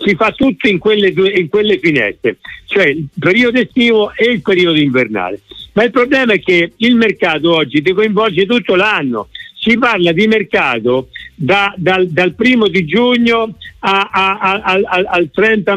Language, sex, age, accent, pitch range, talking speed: Italian, male, 50-69, native, 170-215 Hz, 175 wpm